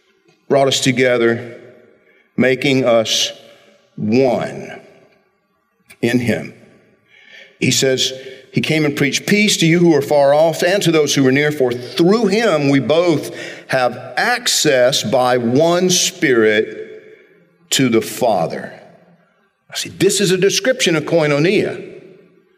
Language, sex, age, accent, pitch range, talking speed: English, male, 50-69, American, 130-185 Hz, 125 wpm